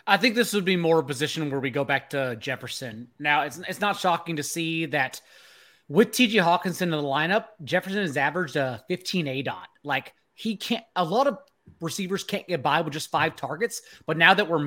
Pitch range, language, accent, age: 150-195 Hz, English, American, 30-49